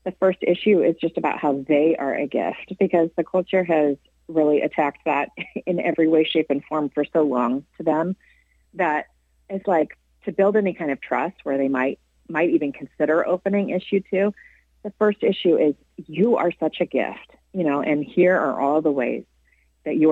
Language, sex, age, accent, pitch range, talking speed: English, female, 40-59, American, 140-185 Hz, 195 wpm